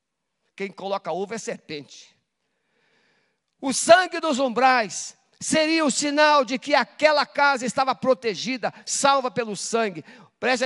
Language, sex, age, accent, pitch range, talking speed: Portuguese, male, 50-69, Brazilian, 200-280 Hz, 125 wpm